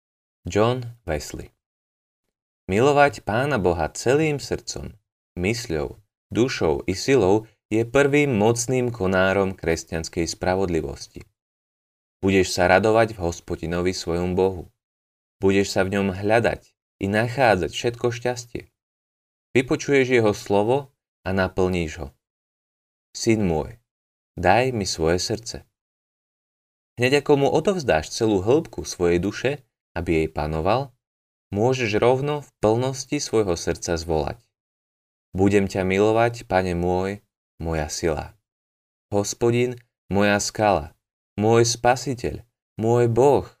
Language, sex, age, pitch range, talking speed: Slovak, male, 30-49, 85-120 Hz, 110 wpm